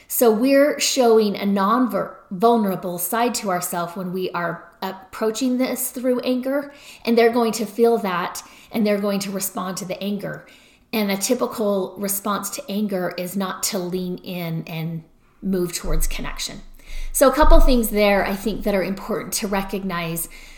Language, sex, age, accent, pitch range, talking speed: English, female, 30-49, American, 185-225 Hz, 170 wpm